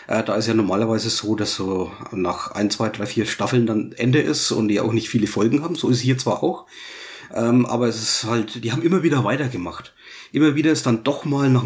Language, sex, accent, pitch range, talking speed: English, male, German, 110-125 Hz, 225 wpm